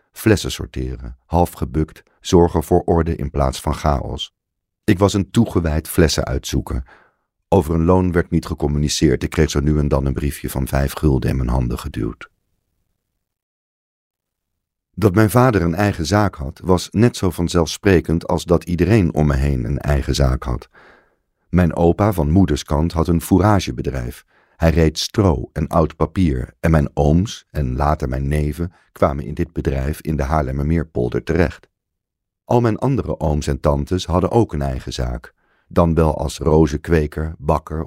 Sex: male